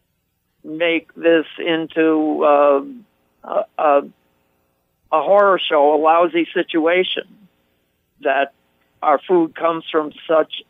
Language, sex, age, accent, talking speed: English, male, 60-79, American, 95 wpm